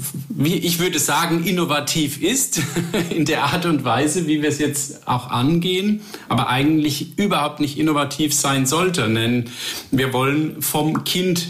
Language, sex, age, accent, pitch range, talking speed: German, male, 50-69, German, 125-160 Hz, 145 wpm